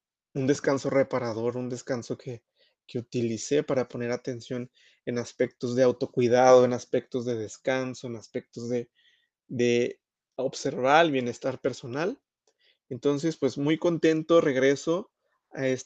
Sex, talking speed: male, 125 wpm